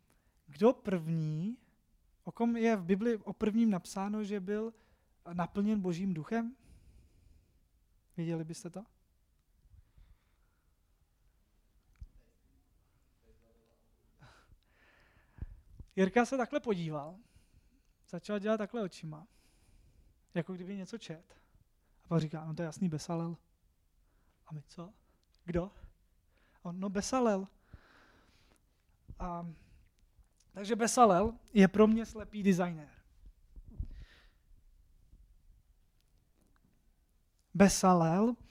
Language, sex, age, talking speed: Czech, male, 20-39, 85 wpm